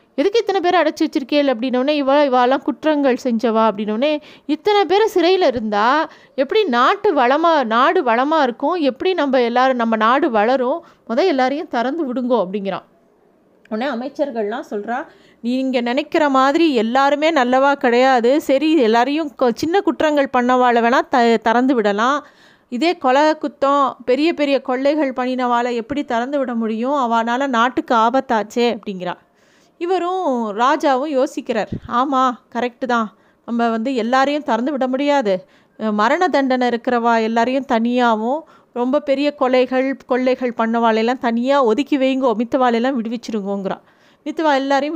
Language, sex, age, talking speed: Tamil, female, 30-49, 125 wpm